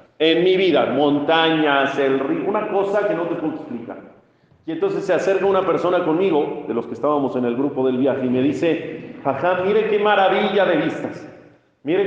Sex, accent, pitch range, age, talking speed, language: male, Mexican, 150-205 Hz, 40-59, 195 wpm, Spanish